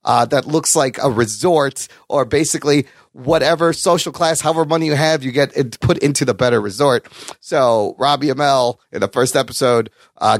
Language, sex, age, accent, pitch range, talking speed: English, male, 30-49, American, 130-200 Hz, 175 wpm